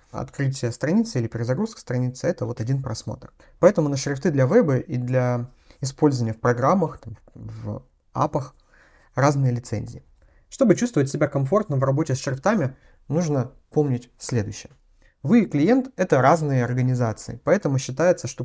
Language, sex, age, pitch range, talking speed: Russian, male, 30-49, 120-160 Hz, 140 wpm